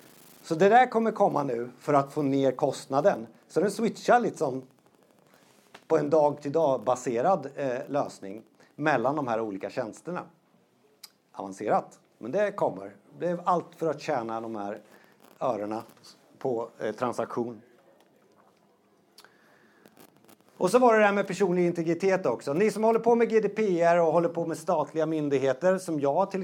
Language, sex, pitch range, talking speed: Swedish, male, 135-175 Hz, 150 wpm